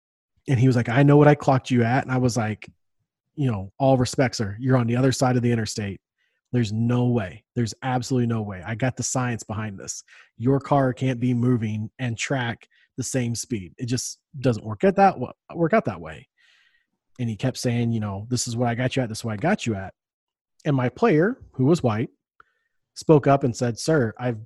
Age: 30-49